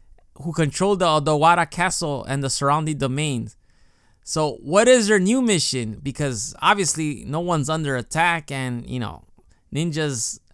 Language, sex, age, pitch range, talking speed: English, male, 20-39, 135-180 Hz, 140 wpm